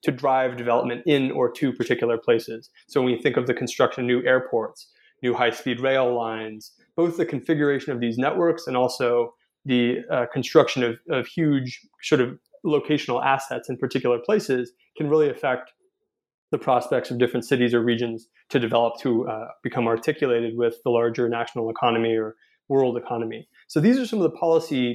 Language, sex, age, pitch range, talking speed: English, male, 20-39, 120-150 Hz, 180 wpm